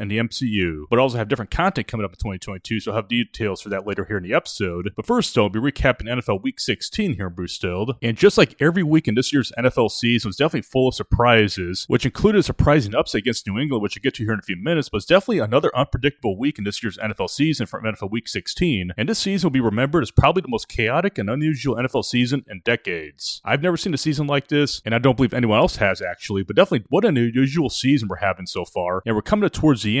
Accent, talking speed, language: American, 265 wpm, English